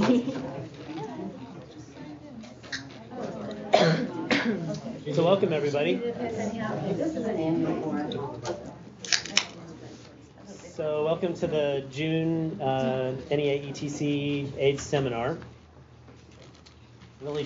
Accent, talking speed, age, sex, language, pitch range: American, 45 wpm, 30-49, male, English, 115-135 Hz